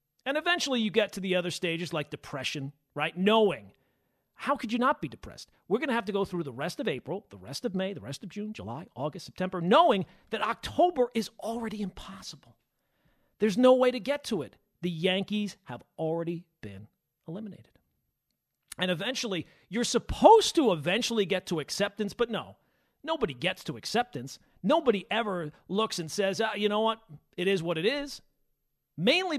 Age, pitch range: 40-59, 165-235 Hz